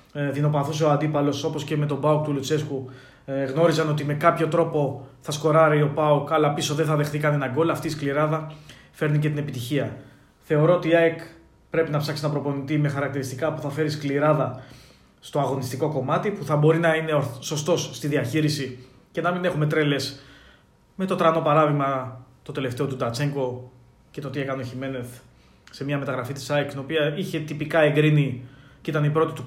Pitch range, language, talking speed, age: 135-155 Hz, Greek, 185 wpm, 20-39